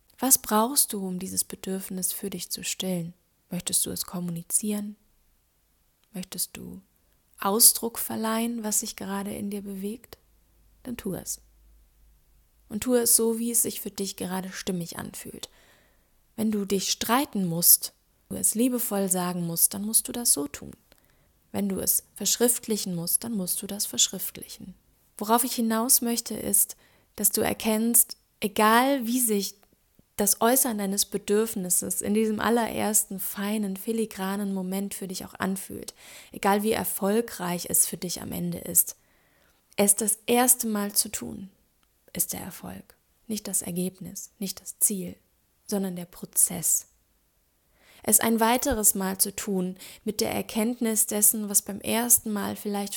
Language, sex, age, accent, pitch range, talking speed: German, female, 20-39, German, 185-225 Hz, 150 wpm